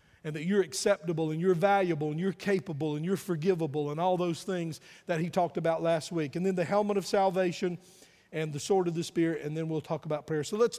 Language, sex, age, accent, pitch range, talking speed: English, male, 50-69, American, 160-200 Hz, 240 wpm